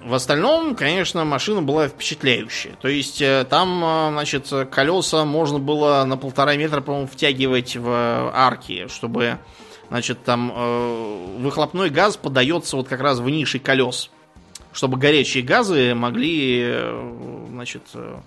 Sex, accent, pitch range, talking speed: male, native, 125-155 Hz, 120 wpm